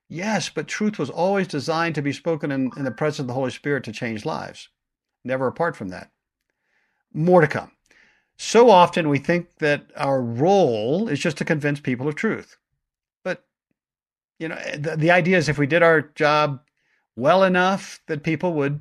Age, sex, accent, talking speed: 60-79, male, American, 185 wpm